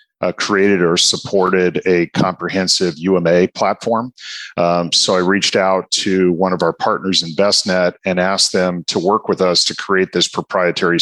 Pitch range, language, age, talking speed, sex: 90-100 Hz, English, 40-59, 170 wpm, male